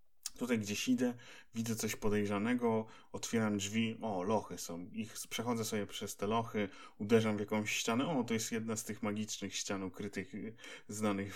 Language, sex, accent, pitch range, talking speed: Polish, male, native, 100-115 Hz, 160 wpm